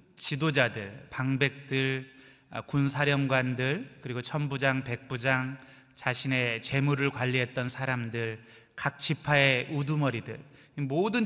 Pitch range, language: 120-145 Hz, Korean